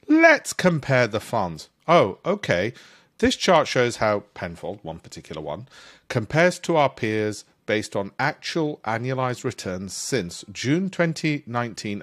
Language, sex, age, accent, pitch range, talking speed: English, male, 40-59, British, 100-165 Hz, 130 wpm